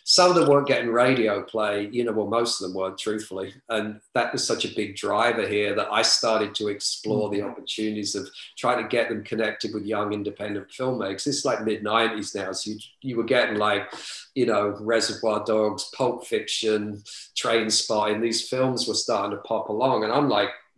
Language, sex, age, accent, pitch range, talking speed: English, male, 40-59, British, 105-115 Hz, 200 wpm